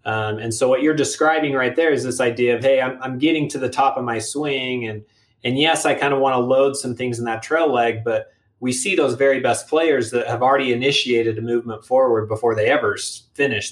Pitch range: 115-140 Hz